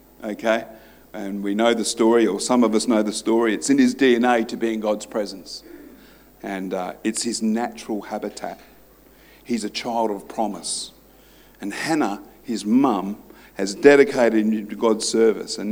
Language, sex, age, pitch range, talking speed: English, male, 50-69, 105-125 Hz, 170 wpm